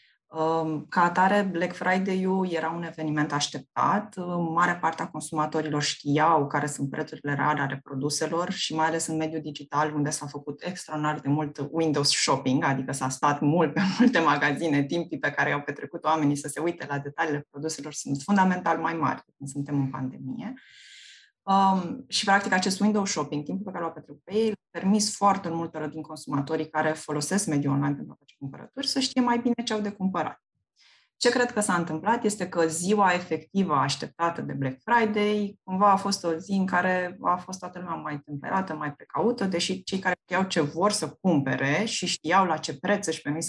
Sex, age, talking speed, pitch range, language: female, 20-39, 190 wpm, 150-190 Hz, Romanian